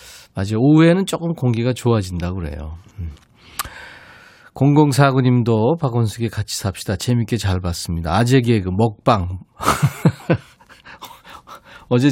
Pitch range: 95-135 Hz